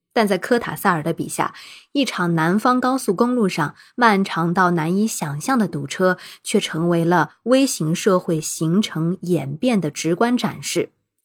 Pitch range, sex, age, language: 165-225 Hz, female, 20-39, Chinese